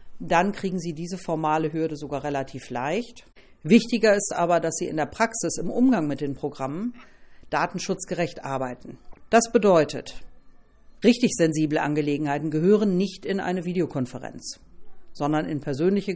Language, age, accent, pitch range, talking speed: German, 50-69, German, 155-185 Hz, 135 wpm